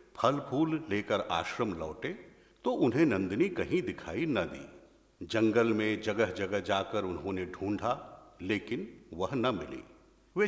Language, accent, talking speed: Hindi, native, 135 wpm